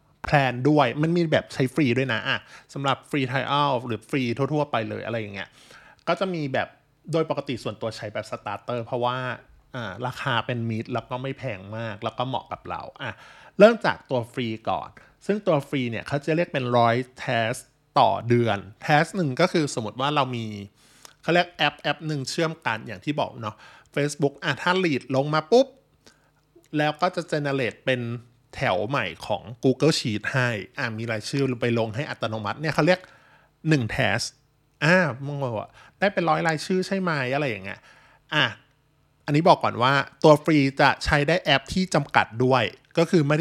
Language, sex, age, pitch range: Thai, male, 20-39, 120-155 Hz